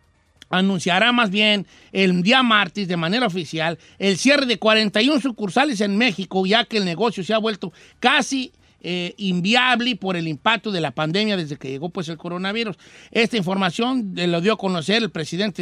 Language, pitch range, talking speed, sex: Spanish, 175-220 Hz, 180 wpm, male